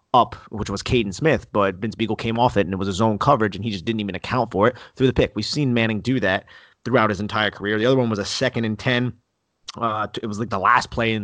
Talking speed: 285 wpm